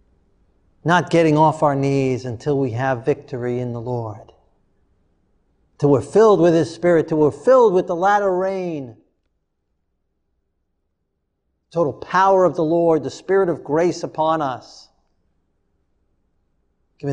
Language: English